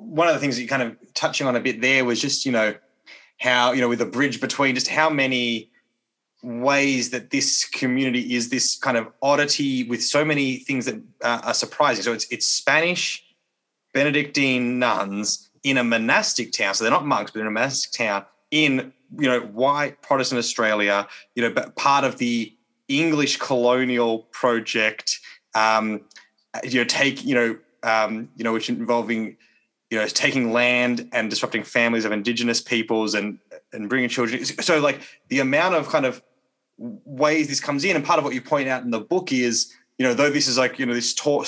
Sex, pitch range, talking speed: male, 115-140 Hz, 195 wpm